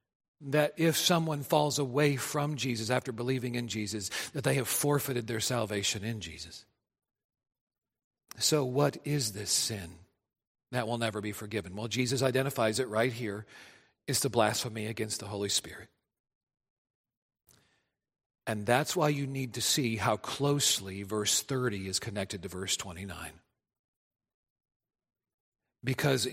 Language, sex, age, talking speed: English, male, 40-59, 135 wpm